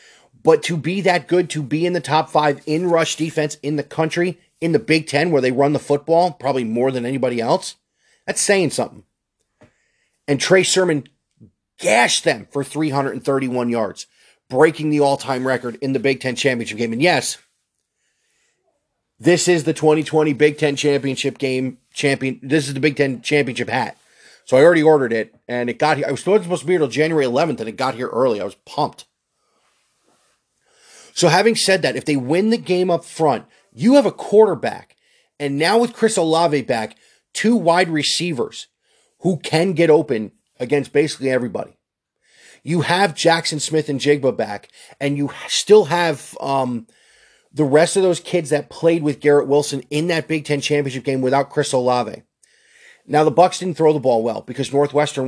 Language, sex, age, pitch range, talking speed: English, male, 30-49, 135-170 Hz, 180 wpm